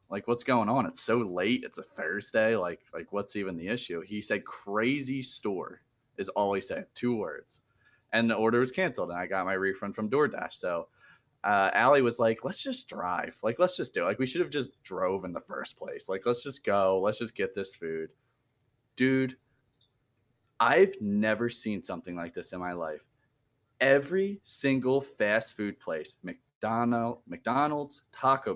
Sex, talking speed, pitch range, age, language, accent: male, 185 wpm, 105-135 Hz, 20-39, English, American